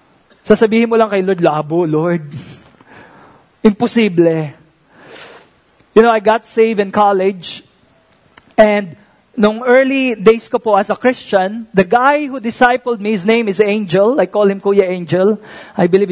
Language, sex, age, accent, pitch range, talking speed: English, male, 20-39, Filipino, 195-235 Hz, 130 wpm